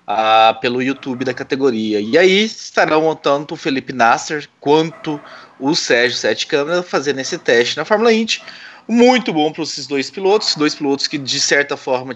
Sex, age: male, 20-39